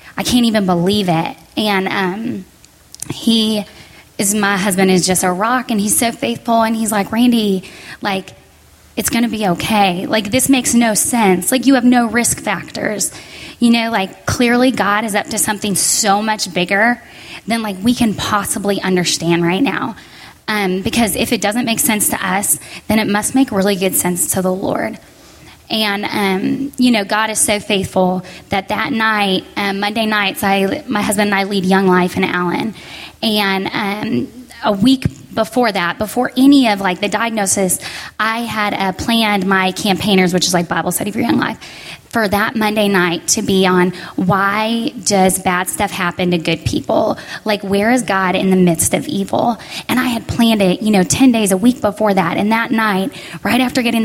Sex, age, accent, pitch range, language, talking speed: female, 10-29, American, 190-225 Hz, English, 190 wpm